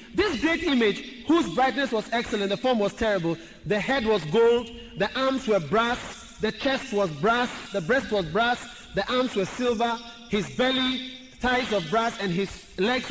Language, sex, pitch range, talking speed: English, male, 230-335 Hz, 180 wpm